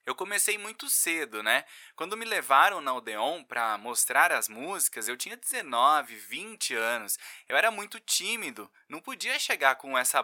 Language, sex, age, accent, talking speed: Portuguese, male, 20-39, Brazilian, 165 wpm